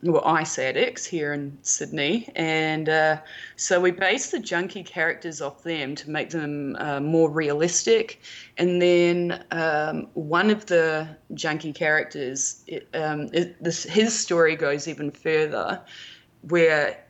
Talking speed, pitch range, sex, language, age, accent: 130 wpm, 150-175 Hz, female, English, 20-39, Australian